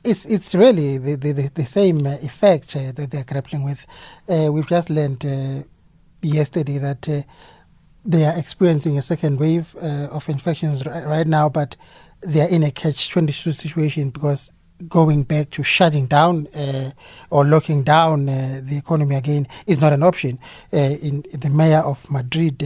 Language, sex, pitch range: English, male, 140-165 Hz